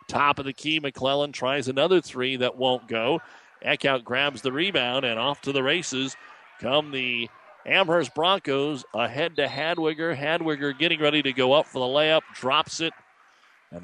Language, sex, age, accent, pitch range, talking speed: English, male, 40-59, American, 110-140 Hz, 170 wpm